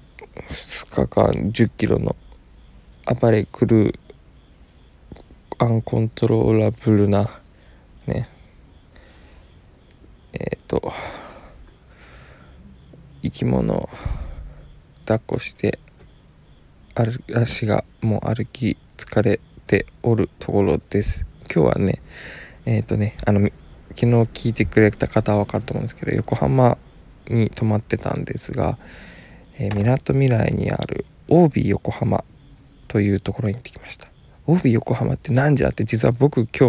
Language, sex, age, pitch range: Japanese, male, 20-39, 100-125 Hz